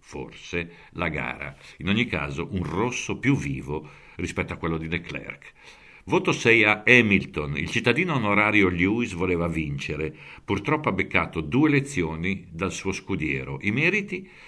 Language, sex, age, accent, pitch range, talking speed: Italian, male, 60-79, native, 75-100 Hz, 145 wpm